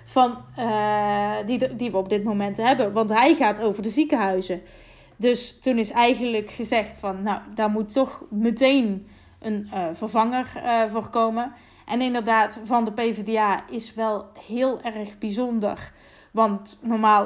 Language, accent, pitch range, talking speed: Dutch, Dutch, 205-235 Hz, 145 wpm